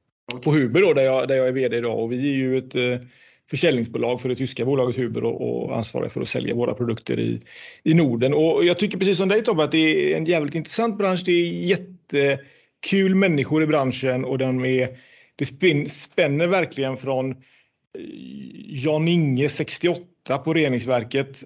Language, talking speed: Swedish, 170 wpm